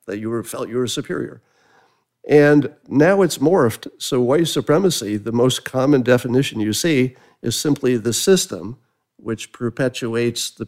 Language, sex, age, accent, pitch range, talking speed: English, male, 50-69, American, 110-140 Hz, 150 wpm